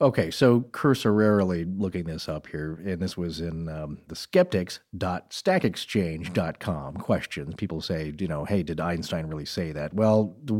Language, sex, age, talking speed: English, male, 40-59, 155 wpm